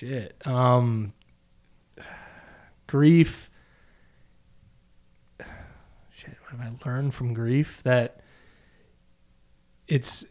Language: English